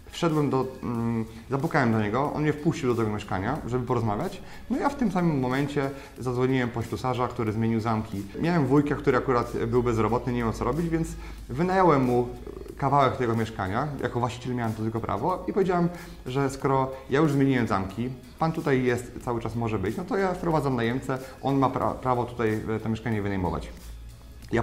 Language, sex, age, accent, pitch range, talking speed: Polish, male, 30-49, native, 115-140 Hz, 185 wpm